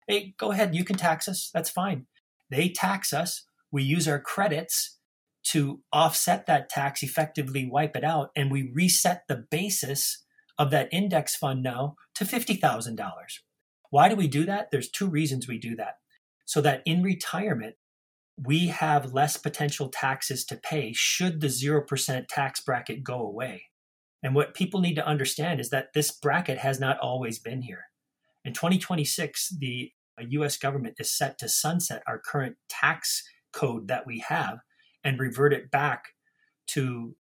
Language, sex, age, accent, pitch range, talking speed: English, male, 30-49, American, 130-160 Hz, 165 wpm